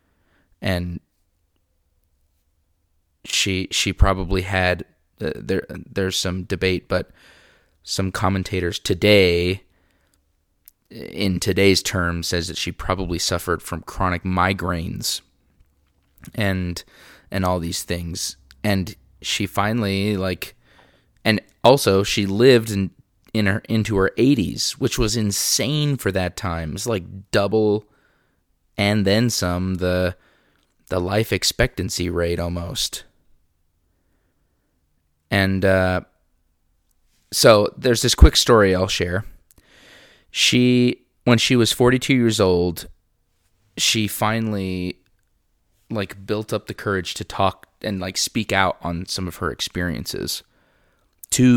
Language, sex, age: English, male, 20-39